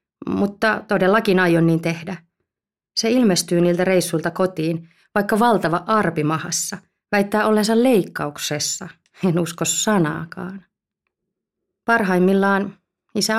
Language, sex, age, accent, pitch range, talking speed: Finnish, female, 30-49, native, 170-210 Hz, 95 wpm